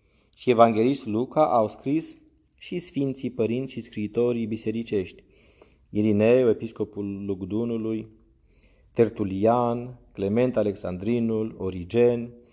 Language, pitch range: Romanian, 100-135 Hz